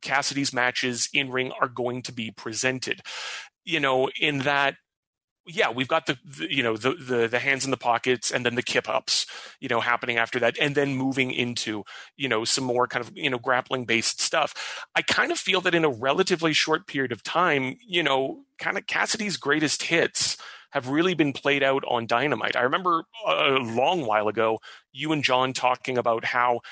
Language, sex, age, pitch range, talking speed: English, male, 30-49, 120-145 Hz, 200 wpm